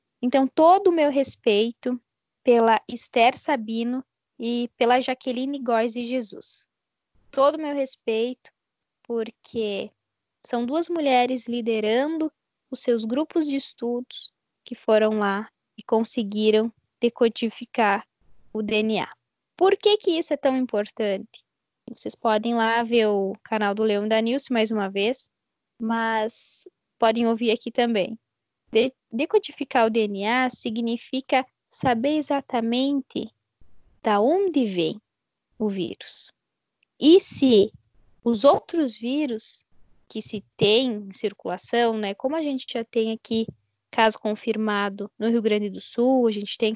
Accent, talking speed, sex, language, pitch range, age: Brazilian, 130 wpm, female, Portuguese, 220-260 Hz, 10-29